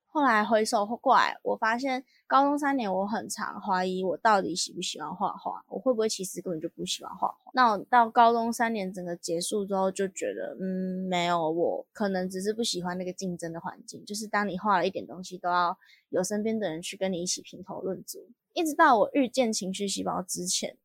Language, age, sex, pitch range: Chinese, 20-39, female, 185-240 Hz